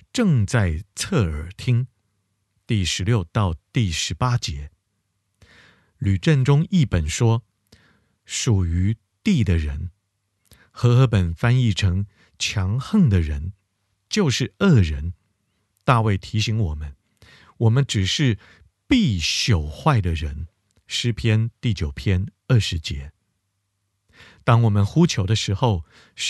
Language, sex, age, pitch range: Chinese, male, 50-69, 95-125 Hz